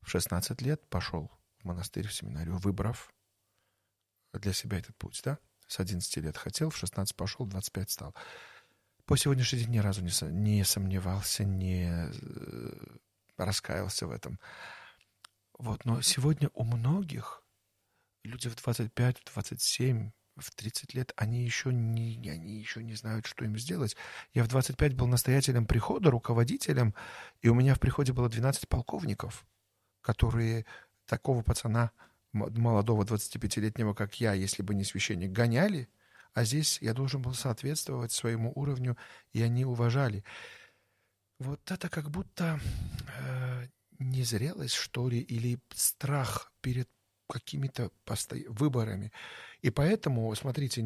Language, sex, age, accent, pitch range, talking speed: Russian, male, 40-59, native, 105-130 Hz, 130 wpm